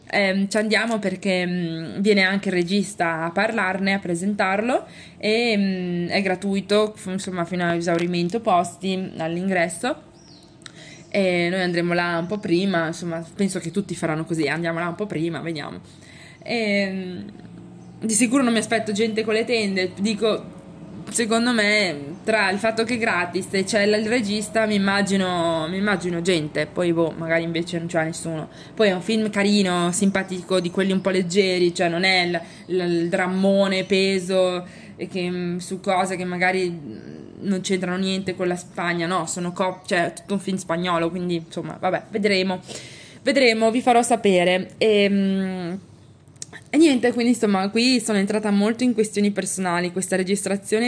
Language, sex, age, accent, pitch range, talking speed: Italian, female, 20-39, native, 175-210 Hz, 155 wpm